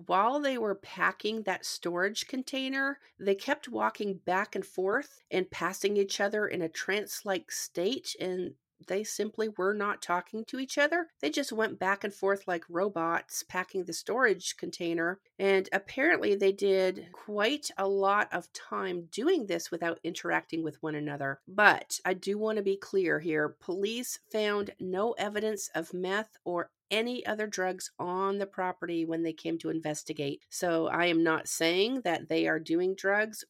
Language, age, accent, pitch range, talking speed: English, 50-69, American, 170-220 Hz, 170 wpm